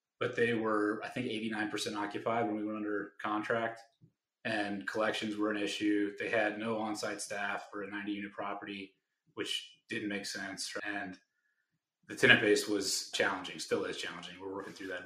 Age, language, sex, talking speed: 30-49, English, male, 180 wpm